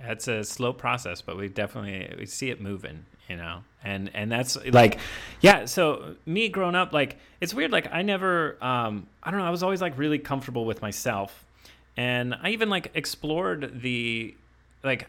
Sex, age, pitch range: male, 30-49, 115-155 Hz